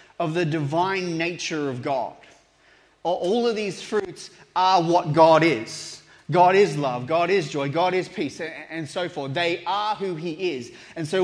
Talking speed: 175 wpm